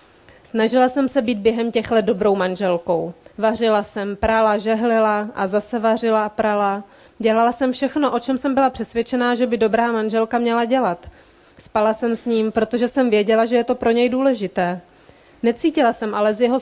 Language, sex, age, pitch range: Czech, female, 30-49, 200-235 Hz